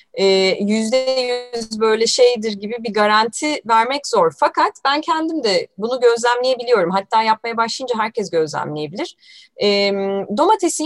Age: 30-49